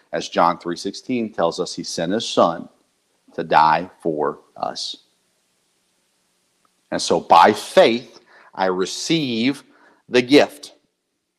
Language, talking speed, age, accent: English, 110 wpm, 50-69, American